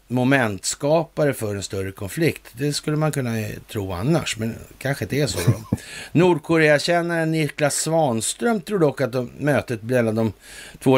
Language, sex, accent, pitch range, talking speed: Swedish, male, native, 105-145 Hz, 155 wpm